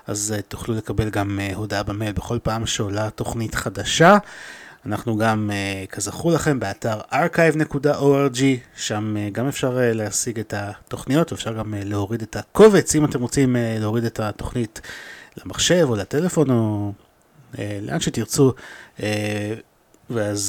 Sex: male